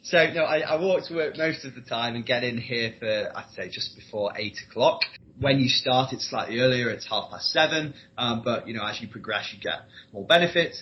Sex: male